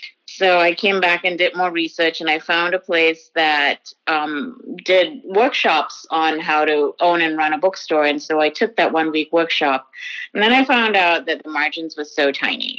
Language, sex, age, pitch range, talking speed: English, female, 30-49, 155-185 Hz, 200 wpm